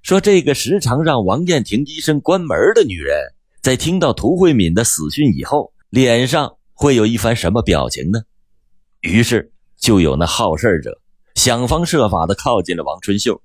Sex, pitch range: male, 95-160 Hz